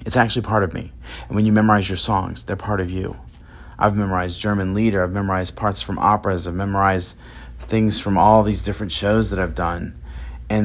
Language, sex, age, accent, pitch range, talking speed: English, male, 40-59, American, 90-115 Hz, 205 wpm